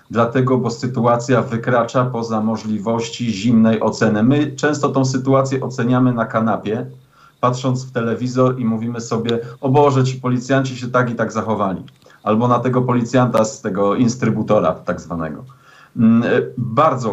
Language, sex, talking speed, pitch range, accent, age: Polish, male, 140 wpm, 105-130 Hz, native, 40-59